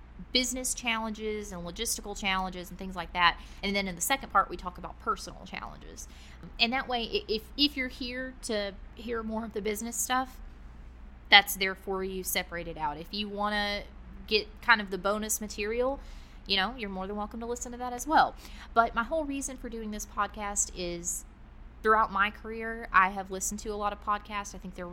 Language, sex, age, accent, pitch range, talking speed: English, female, 20-39, American, 170-225 Hz, 205 wpm